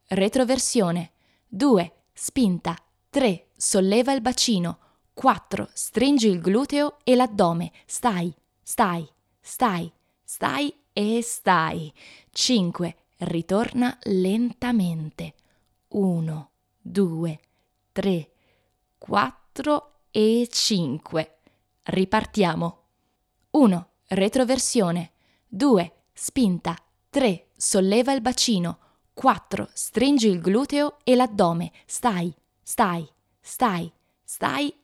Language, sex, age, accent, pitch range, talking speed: Italian, female, 20-39, native, 170-235 Hz, 80 wpm